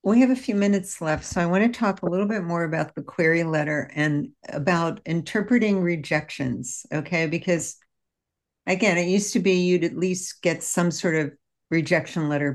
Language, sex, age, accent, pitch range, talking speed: English, female, 60-79, American, 155-195 Hz, 185 wpm